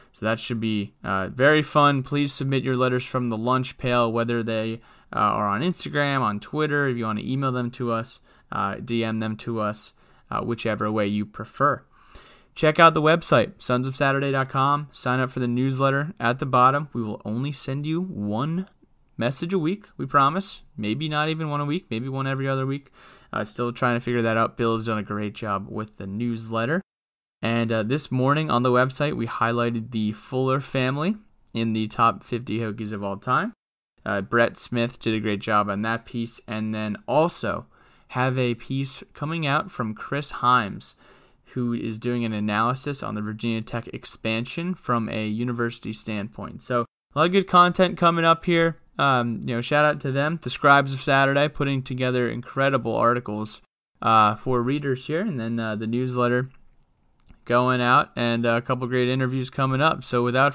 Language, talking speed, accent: English, 190 wpm, American